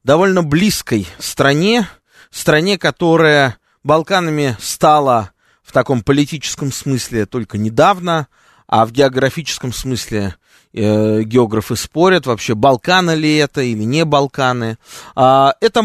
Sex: male